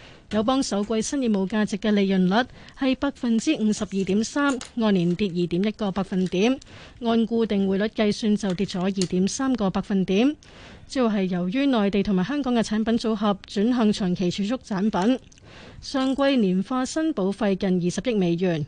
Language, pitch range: Chinese, 195-240 Hz